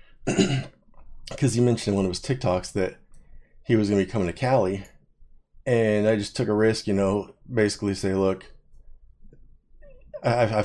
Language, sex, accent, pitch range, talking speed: English, male, American, 90-105 Hz, 165 wpm